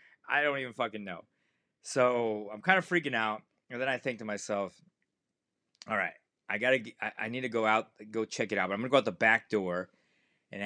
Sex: male